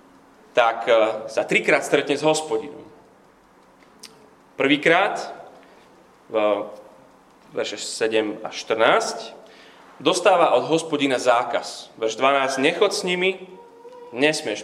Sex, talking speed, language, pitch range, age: male, 85 wpm, Slovak, 130-185 Hz, 30-49